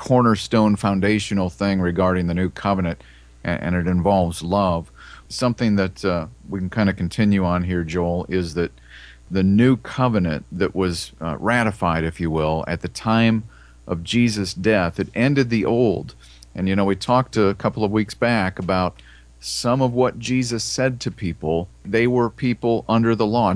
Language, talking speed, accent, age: English, 175 wpm, American, 40-59